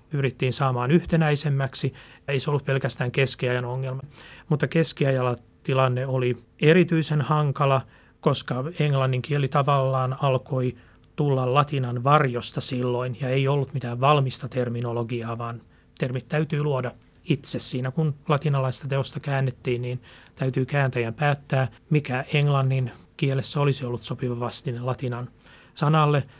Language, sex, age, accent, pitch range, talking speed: Finnish, male, 30-49, native, 125-150 Hz, 120 wpm